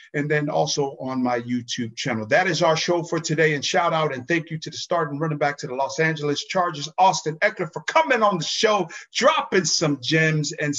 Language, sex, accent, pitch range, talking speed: English, male, American, 140-175 Hz, 225 wpm